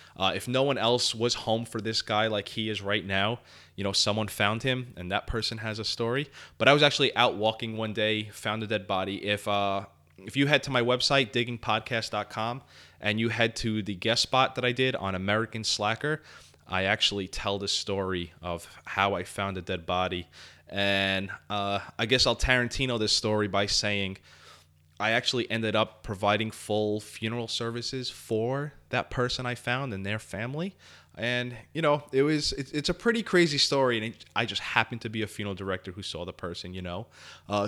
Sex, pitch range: male, 100-120 Hz